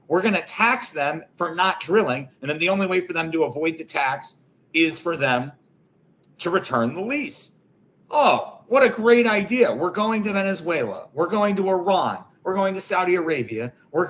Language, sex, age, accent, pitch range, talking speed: English, male, 40-59, American, 160-200 Hz, 185 wpm